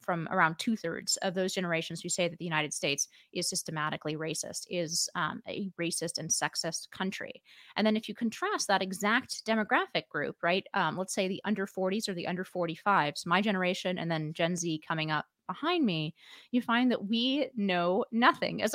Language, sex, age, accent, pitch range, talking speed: English, female, 30-49, American, 175-220 Hz, 190 wpm